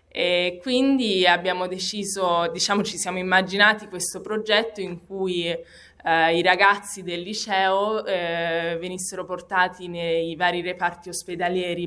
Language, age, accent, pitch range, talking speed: Italian, 20-39, native, 170-195 Hz, 120 wpm